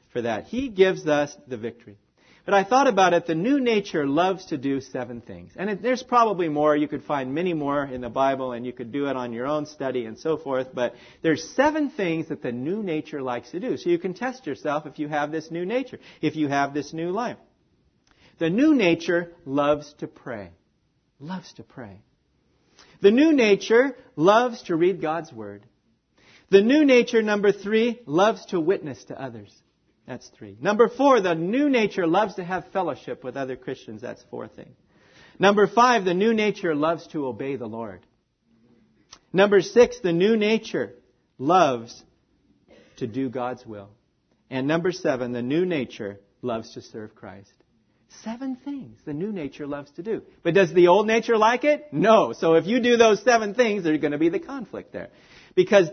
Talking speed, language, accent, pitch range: 190 wpm, English, American, 130-215 Hz